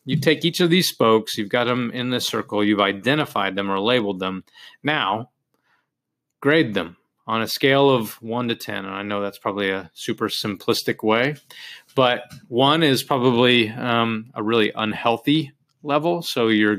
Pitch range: 110-135 Hz